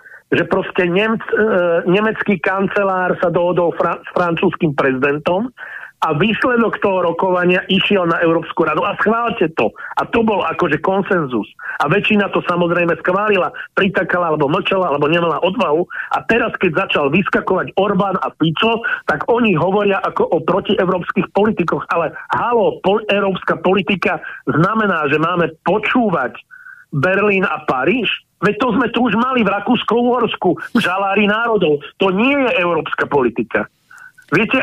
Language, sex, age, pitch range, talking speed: Slovak, male, 50-69, 180-220 Hz, 140 wpm